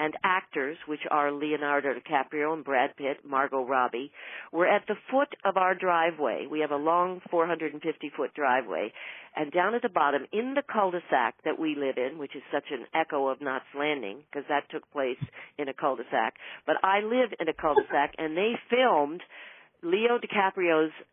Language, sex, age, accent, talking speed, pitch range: English, female, 50-69, American, 175 wpm, 150-190 Hz